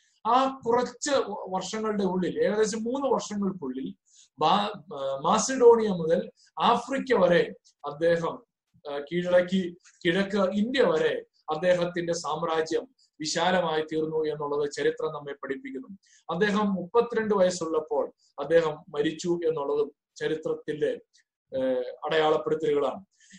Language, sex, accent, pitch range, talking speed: Malayalam, male, native, 170-235 Hz, 85 wpm